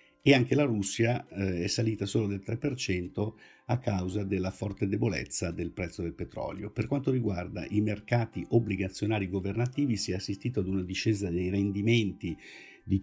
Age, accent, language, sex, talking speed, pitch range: 50-69, native, Italian, male, 160 wpm, 95-115 Hz